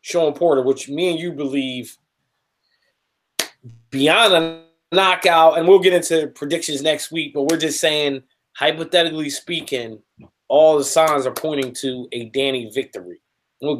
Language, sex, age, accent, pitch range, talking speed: English, male, 20-39, American, 140-180 Hz, 150 wpm